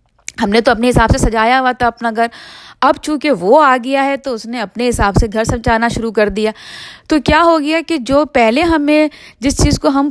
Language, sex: Urdu, female